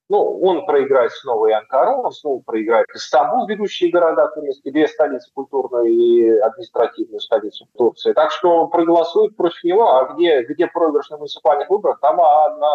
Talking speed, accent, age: 160 wpm, native, 30-49